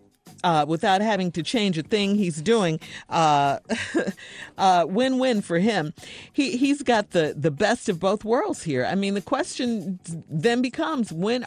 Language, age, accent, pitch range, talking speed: English, 50-69, American, 155-230 Hz, 165 wpm